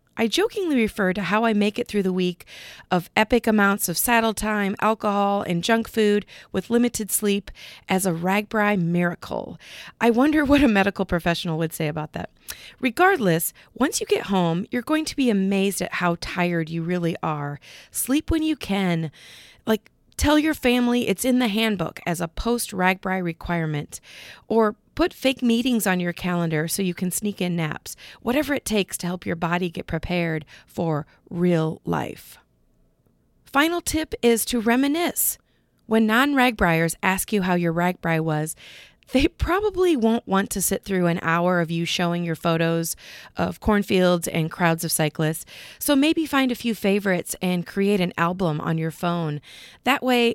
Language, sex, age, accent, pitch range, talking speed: English, female, 40-59, American, 175-225 Hz, 170 wpm